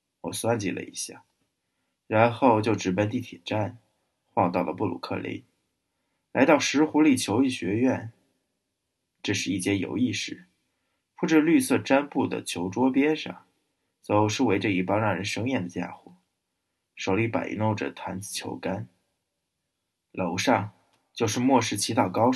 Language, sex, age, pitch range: Chinese, male, 20-39, 95-125 Hz